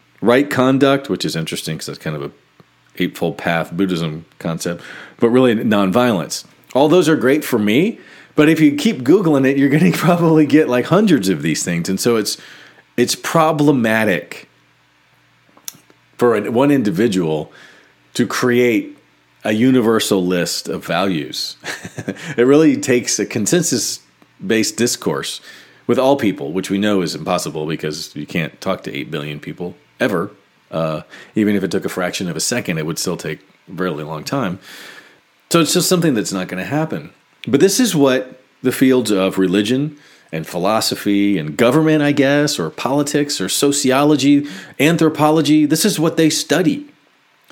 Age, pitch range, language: 40-59, 100-150 Hz, English